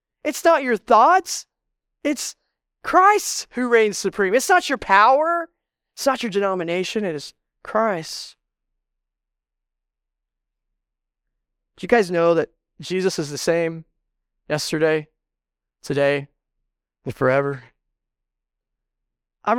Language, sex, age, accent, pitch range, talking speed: English, male, 20-39, American, 130-200 Hz, 105 wpm